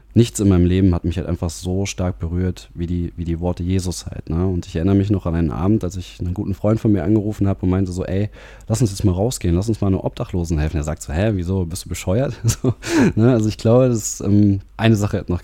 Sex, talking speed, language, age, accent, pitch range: male, 270 wpm, German, 20-39, German, 90-105 Hz